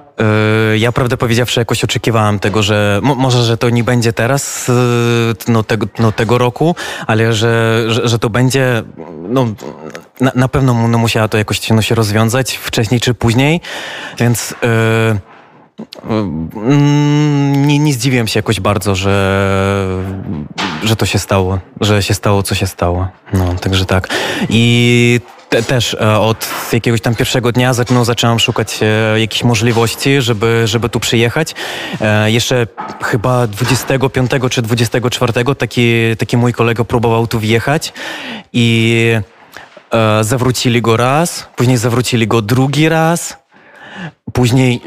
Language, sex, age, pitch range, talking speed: Polish, male, 20-39, 110-130 Hz, 130 wpm